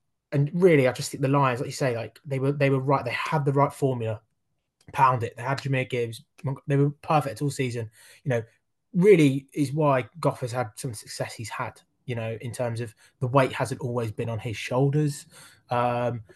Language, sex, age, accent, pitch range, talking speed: English, male, 20-39, British, 115-140 Hz, 215 wpm